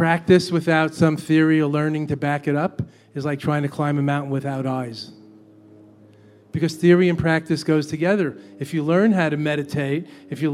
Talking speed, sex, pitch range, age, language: 190 wpm, male, 140-160 Hz, 40-59, English